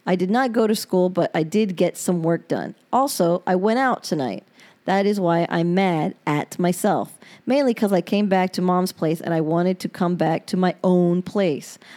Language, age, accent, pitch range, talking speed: English, 40-59, American, 180-220 Hz, 215 wpm